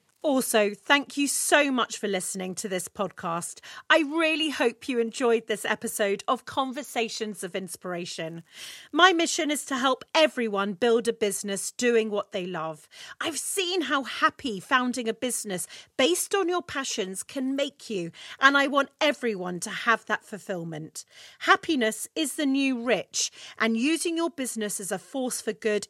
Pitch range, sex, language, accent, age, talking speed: 205-295 Hz, female, English, British, 40-59, 160 wpm